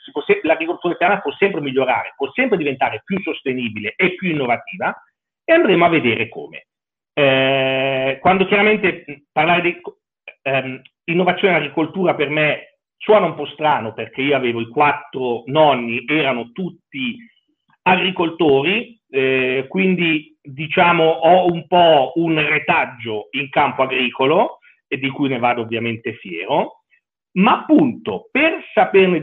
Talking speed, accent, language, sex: 135 wpm, native, Italian, male